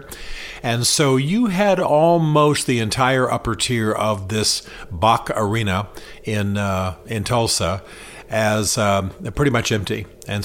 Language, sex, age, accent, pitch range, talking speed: English, male, 50-69, American, 100-130 Hz, 130 wpm